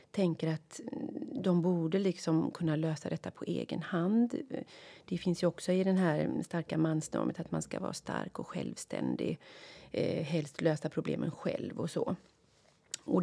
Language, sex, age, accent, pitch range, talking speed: Swedish, female, 40-59, native, 165-200 Hz, 160 wpm